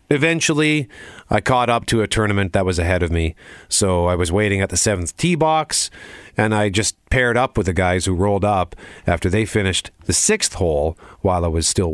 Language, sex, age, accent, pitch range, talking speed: English, male, 40-59, American, 90-135 Hz, 210 wpm